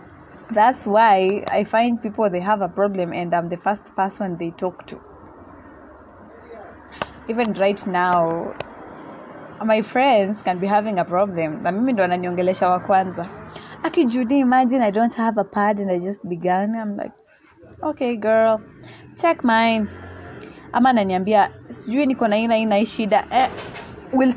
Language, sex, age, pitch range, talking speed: English, female, 20-39, 195-255 Hz, 115 wpm